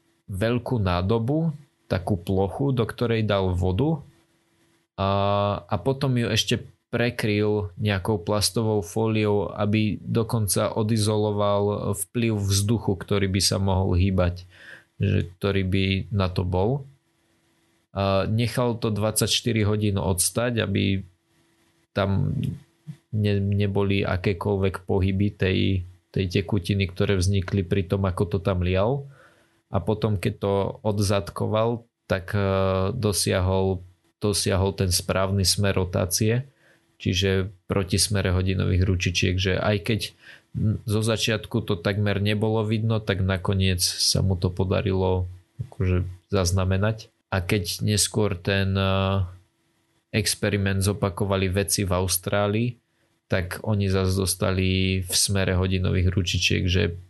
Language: Slovak